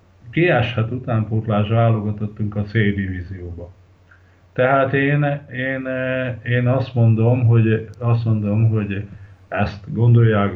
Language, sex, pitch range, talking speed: Hungarian, male, 100-120 Hz, 100 wpm